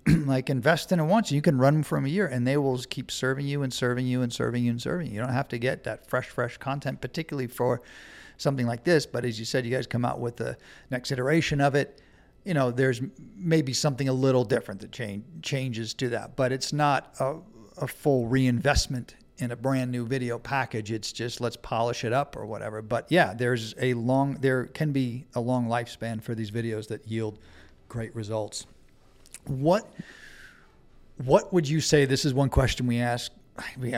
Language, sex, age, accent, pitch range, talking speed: English, male, 50-69, American, 120-140 Hz, 210 wpm